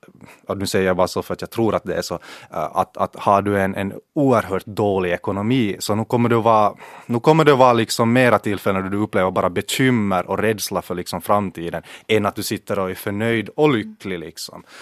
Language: Finnish